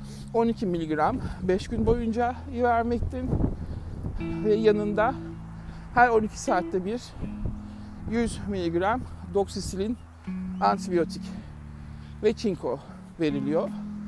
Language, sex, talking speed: Turkish, male, 80 wpm